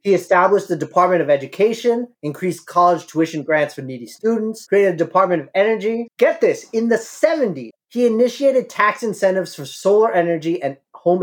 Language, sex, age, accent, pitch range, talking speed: English, male, 20-39, American, 160-235 Hz, 170 wpm